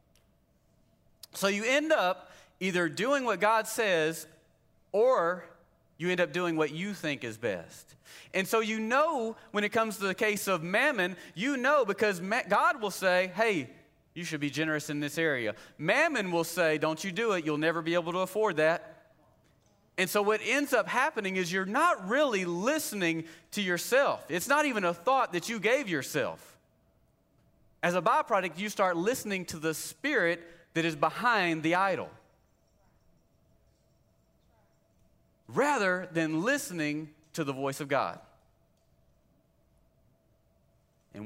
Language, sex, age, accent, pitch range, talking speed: English, male, 30-49, American, 155-220 Hz, 150 wpm